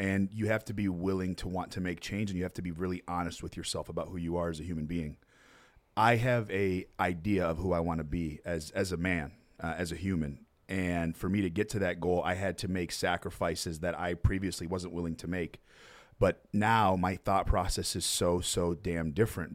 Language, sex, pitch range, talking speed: English, male, 85-95 Hz, 235 wpm